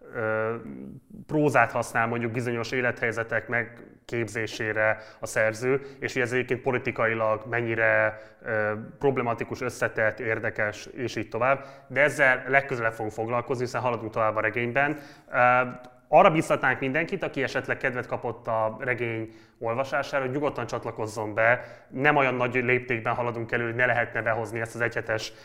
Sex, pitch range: male, 115-135 Hz